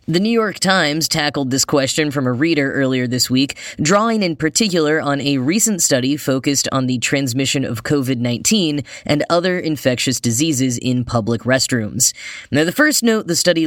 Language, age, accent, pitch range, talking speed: English, 10-29, American, 125-160 Hz, 170 wpm